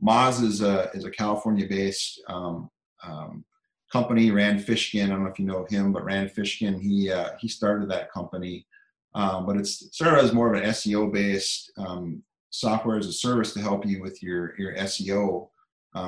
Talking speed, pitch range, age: 185 wpm, 95-105 Hz, 30-49